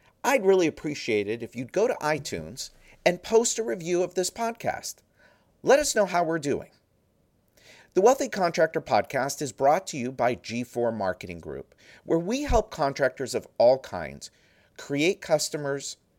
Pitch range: 115-185 Hz